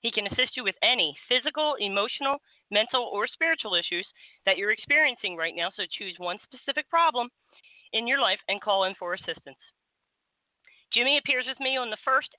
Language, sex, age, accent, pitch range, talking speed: English, female, 40-59, American, 180-245 Hz, 180 wpm